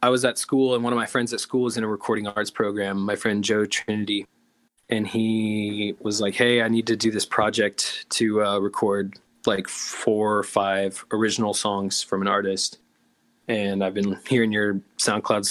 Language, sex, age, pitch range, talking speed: English, male, 20-39, 100-115 Hz, 195 wpm